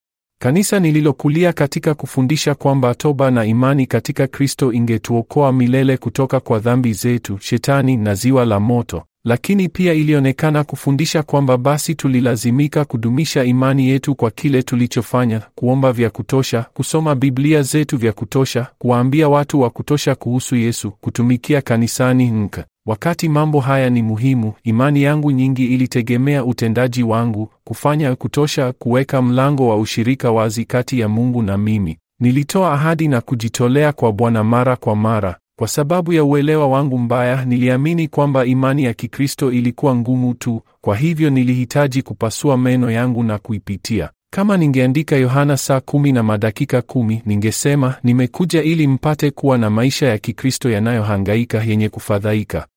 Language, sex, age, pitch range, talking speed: English, male, 40-59, 115-145 Hz, 145 wpm